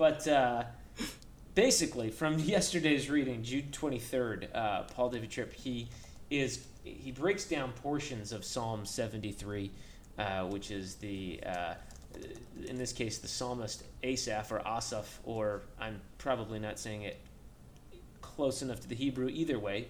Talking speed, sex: 150 wpm, male